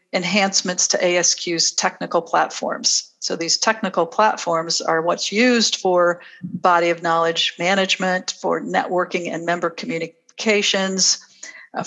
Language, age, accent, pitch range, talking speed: English, 50-69, American, 175-210 Hz, 115 wpm